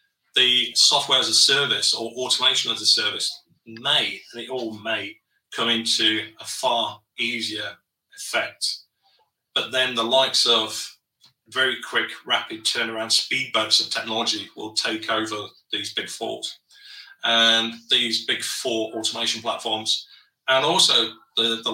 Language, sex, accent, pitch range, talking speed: English, male, British, 115-135 Hz, 140 wpm